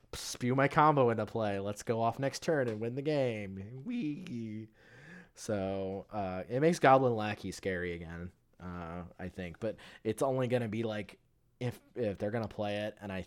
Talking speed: 180 wpm